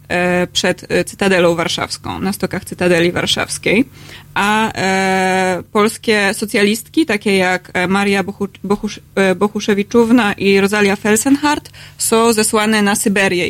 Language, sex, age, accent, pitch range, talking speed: Polish, female, 20-39, native, 195-235 Hz, 105 wpm